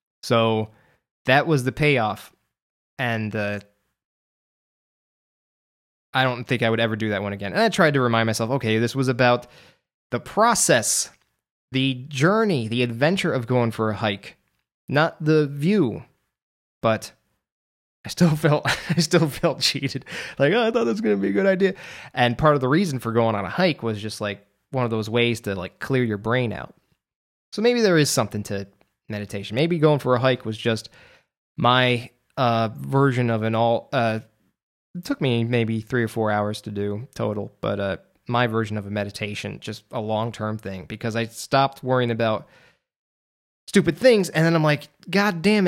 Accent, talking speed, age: American, 185 wpm, 20-39